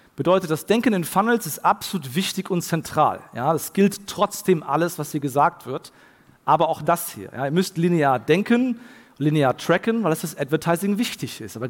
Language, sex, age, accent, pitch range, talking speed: German, male, 40-59, German, 145-190 Hz, 190 wpm